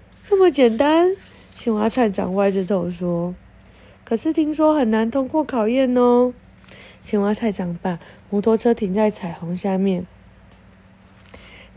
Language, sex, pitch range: Chinese, female, 195-285 Hz